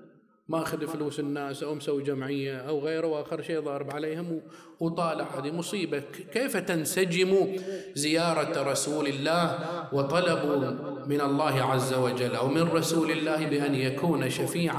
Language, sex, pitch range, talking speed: Arabic, male, 125-165 Hz, 135 wpm